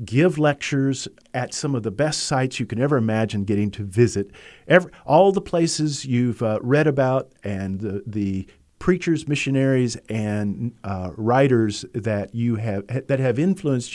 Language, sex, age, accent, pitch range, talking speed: English, male, 50-69, American, 105-130 Hz, 160 wpm